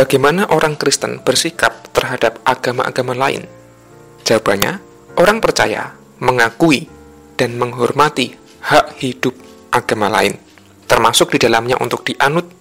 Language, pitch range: Indonesian, 120-155 Hz